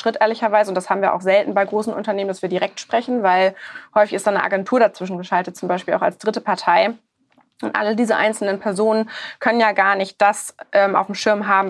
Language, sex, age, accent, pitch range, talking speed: German, female, 20-39, German, 185-215 Hz, 225 wpm